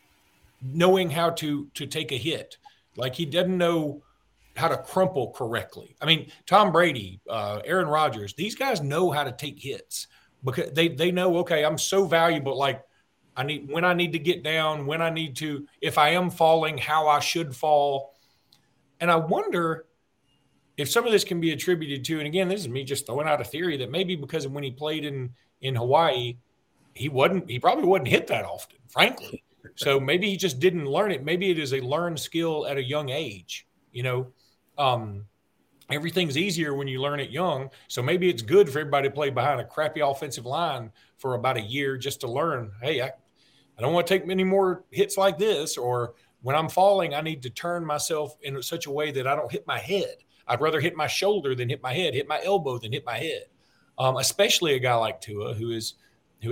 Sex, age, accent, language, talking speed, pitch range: male, 40-59, American, English, 210 wpm, 130-175 Hz